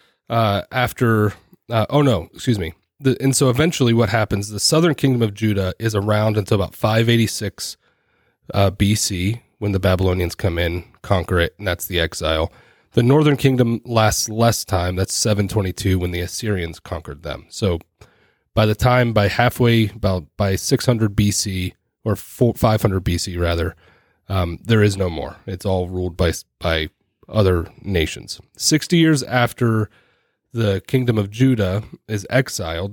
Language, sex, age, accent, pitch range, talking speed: English, male, 30-49, American, 95-120 Hz, 165 wpm